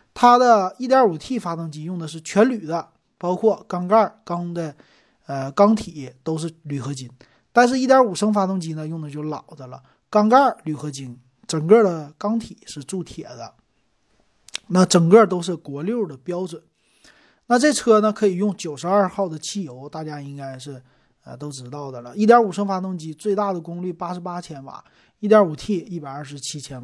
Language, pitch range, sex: Chinese, 150-220 Hz, male